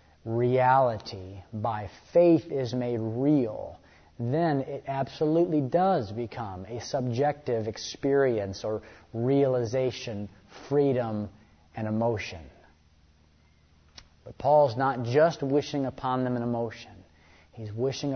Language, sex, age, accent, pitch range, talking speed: English, male, 30-49, American, 105-130 Hz, 100 wpm